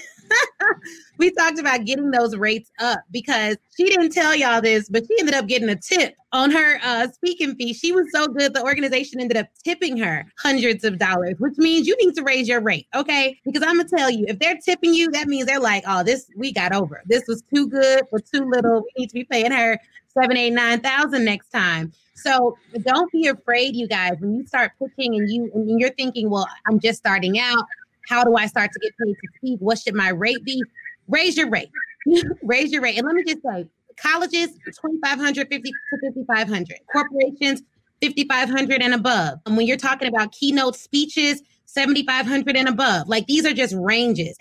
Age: 30-49